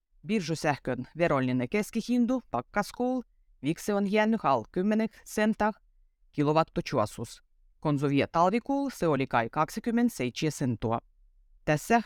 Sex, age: female, 30-49